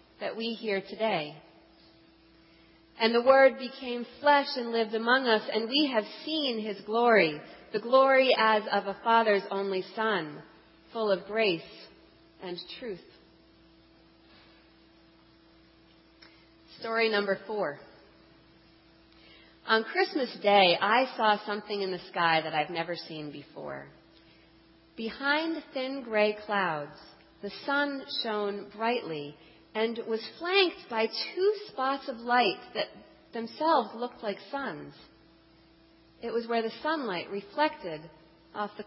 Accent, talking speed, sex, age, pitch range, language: American, 120 wpm, female, 40-59, 165-255 Hz, English